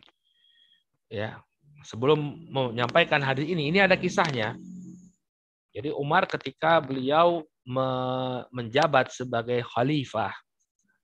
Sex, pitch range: male, 130-165 Hz